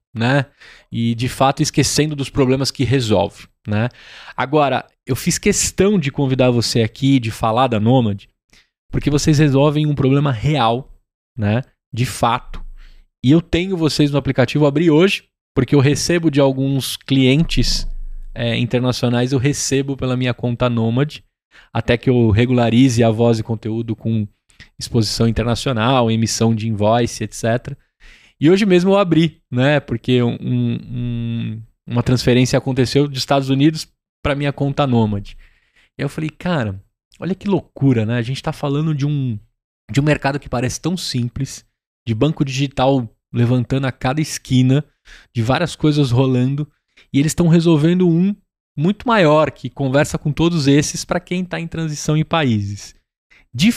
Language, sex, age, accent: Portuguese, male, 20-39, Brazilian